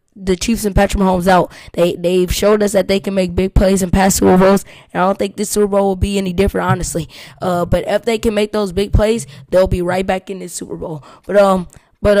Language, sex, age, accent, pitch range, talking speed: English, female, 20-39, American, 185-210 Hz, 255 wpm